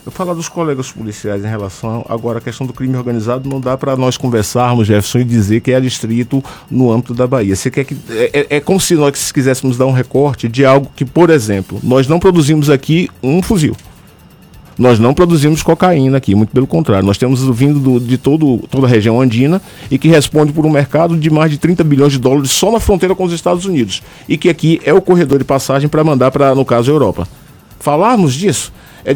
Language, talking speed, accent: Portuguese, 220 wpm, Brazilian